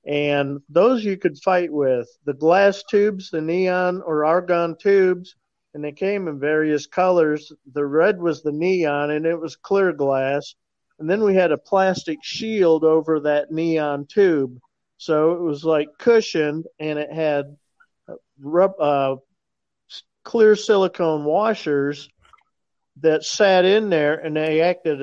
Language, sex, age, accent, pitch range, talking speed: English, male, 50-69, American, 145-175 Hz, 145 wpm